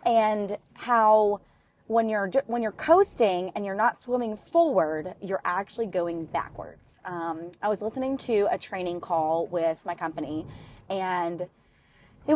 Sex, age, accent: female, 20-39, American